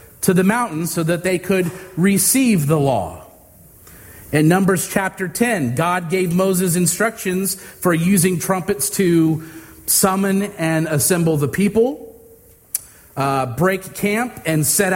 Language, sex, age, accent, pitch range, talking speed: English, male, 40-59, American, 150-195 Hz, 130 wpm